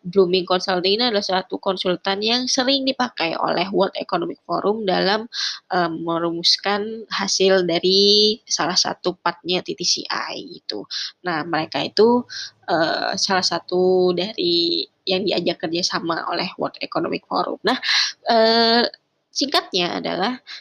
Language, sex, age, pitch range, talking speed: Indonesian, female, 20-39, 180-230 Hz, 115 wpm